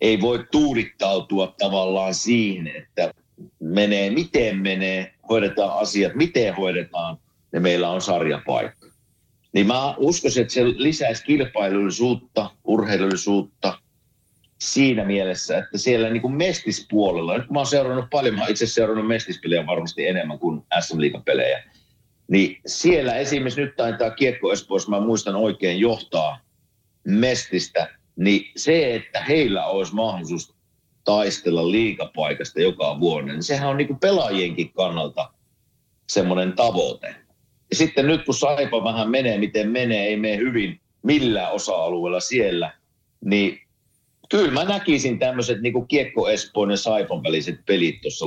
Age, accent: 50-69, native